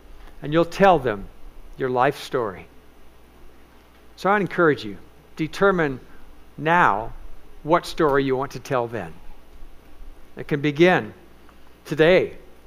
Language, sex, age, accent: English, male, 60-79, American